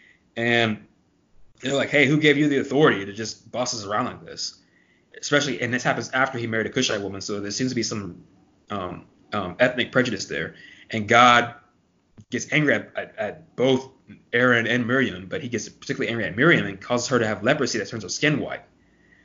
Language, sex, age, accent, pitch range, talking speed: English, male, 20-39, American, 105-125 Hz, 205 wpm